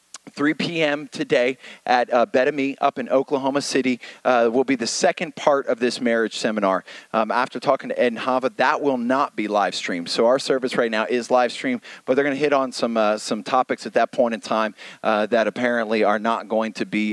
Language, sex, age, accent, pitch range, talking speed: English, male, 30-49, American, 110-135 Hz, 230 wpm